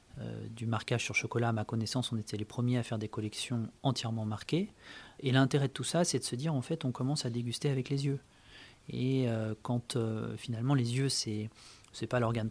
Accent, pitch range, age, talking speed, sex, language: French, 115-145 Hz, 30-49, 225 wpm, male, French